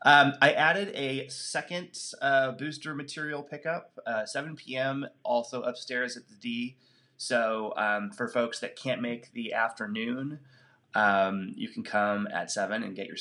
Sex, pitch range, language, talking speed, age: male, 115-145 Hz, English, 160 wpm, 30-49